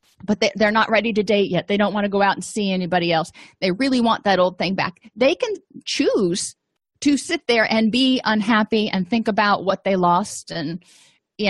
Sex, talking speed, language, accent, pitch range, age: female, 215 wpm, English, American, 195-250 Hz, 40-59